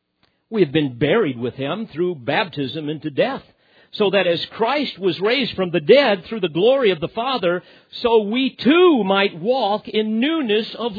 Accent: American